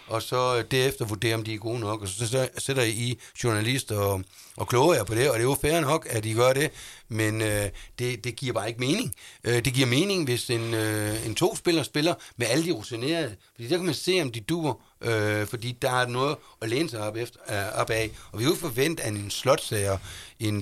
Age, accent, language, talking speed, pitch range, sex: 60-79, native, Danish, 230 wpm, 105-135 Hz, male